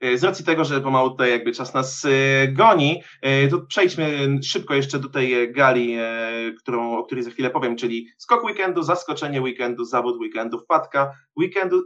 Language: Polish